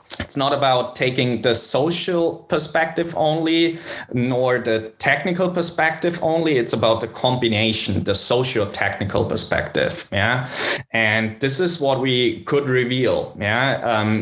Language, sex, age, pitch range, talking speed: English, male, 20-39, 115-150 Hz, 125 wpm